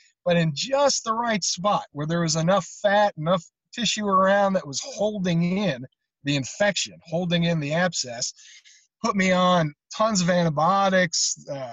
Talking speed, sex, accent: 160 wpm, male, American